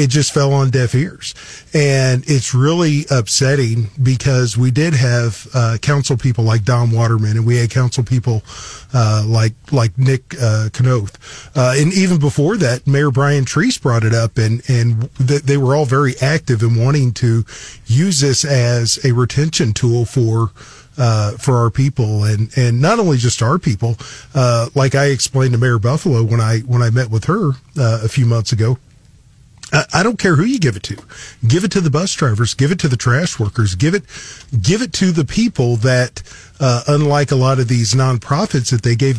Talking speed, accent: 195 wpm, American